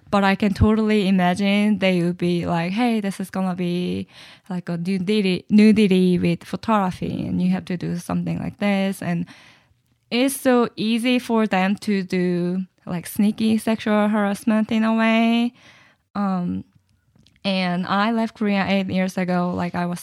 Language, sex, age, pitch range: English, female, 10-29, 180-205 Hz